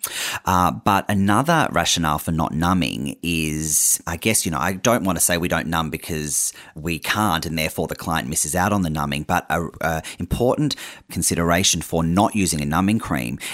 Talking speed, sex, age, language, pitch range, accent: 185 wpm, male, 30-49, English, 80-100 Hz, Australian